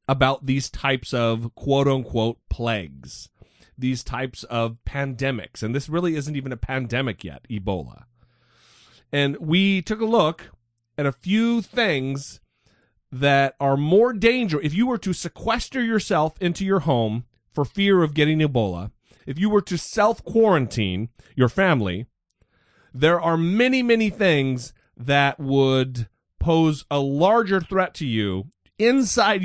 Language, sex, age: English, male, 40-59